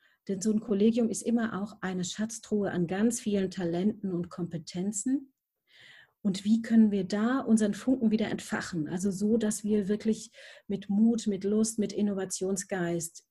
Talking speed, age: 160 wpm, 40-59